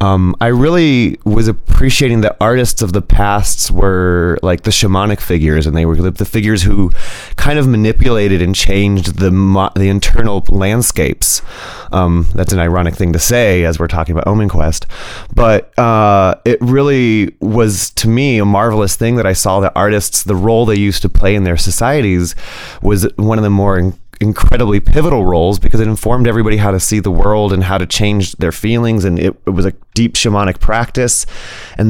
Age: 30-49